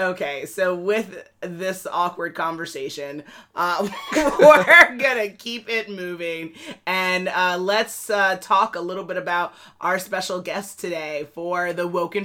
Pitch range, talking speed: 180-210 Hz, 135 wpm